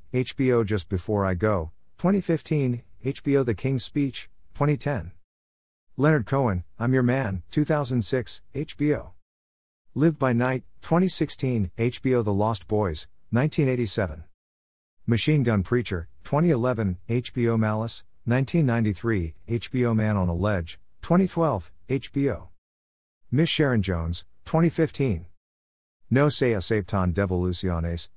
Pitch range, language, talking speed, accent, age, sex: 90-130 Hz, English, 105 wpm, American, 50-69, male